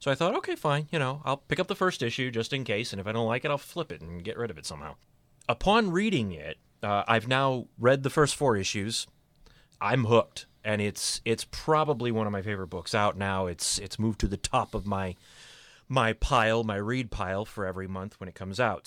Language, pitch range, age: English, 100-125 Hz, 30-49